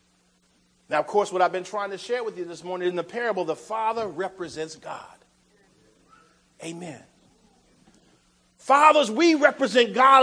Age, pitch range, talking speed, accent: 50-69, 180-280 Hz, 145 wpm, American